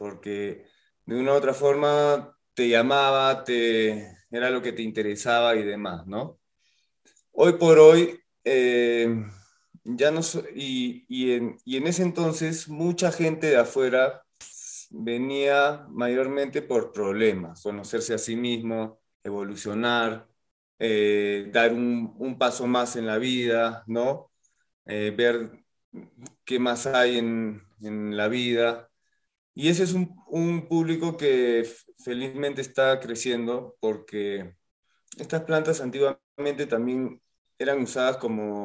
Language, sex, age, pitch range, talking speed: Spanish, male, 20-39, 110-140 Hz, 125 wpm